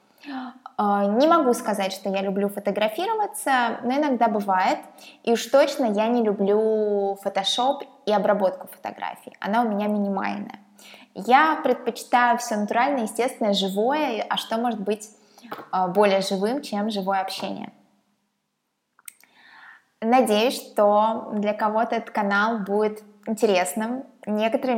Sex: female